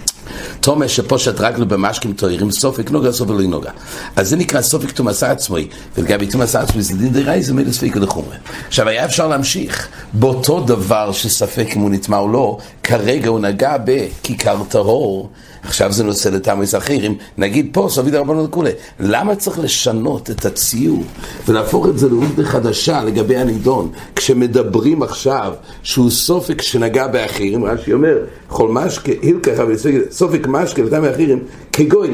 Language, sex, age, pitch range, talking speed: English, male, 60-79, 105-150 Hz, 145 wpm